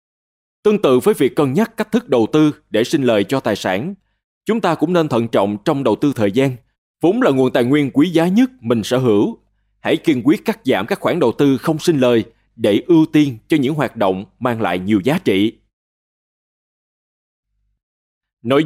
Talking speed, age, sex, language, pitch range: 205 wpm, 20-39, male, Vietnamese, 110-155 Hz